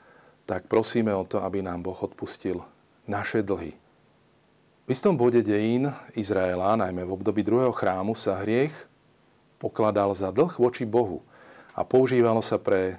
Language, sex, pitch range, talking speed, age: Slovak, male, 100-120 Hz, 145 wpm, 40-59